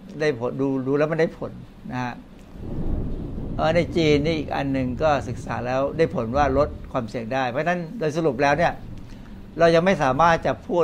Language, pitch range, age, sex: Thai, 125-155 Hz, 60-79, male